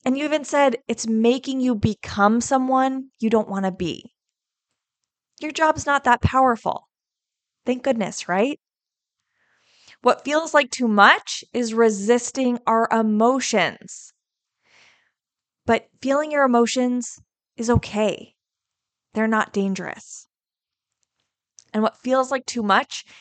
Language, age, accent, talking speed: English, 20-39, American, 120 wpm